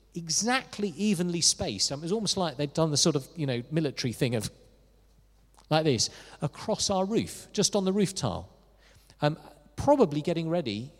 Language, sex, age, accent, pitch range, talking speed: English, male, 40-59, British, 135-215 Hz, 175 wpm